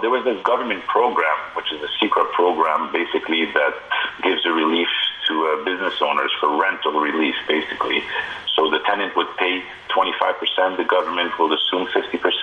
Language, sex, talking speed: English, male, 160 wpm